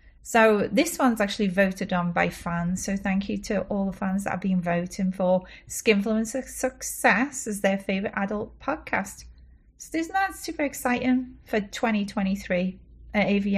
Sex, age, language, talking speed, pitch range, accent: female, 30-49, English, 150 wpm, 185-235 Hz, British